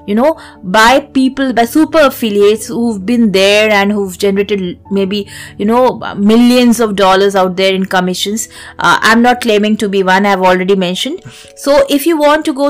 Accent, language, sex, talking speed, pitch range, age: Indian, English, female, 185 wpm, 195-250 Hz, 20-39